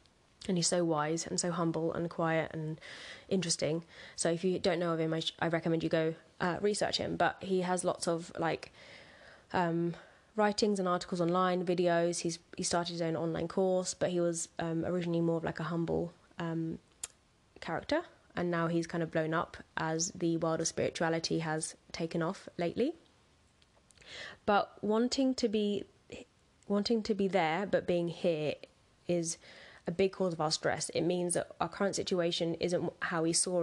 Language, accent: English, British